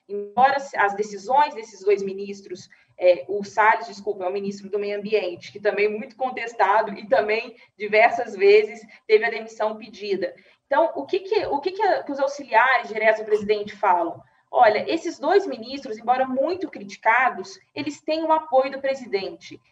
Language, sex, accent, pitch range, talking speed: Portuguese, female, Brazilian, 210-300 Hz, 155 wpm